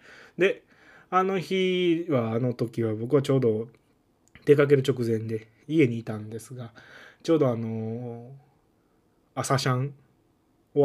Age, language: 20-39, Japanese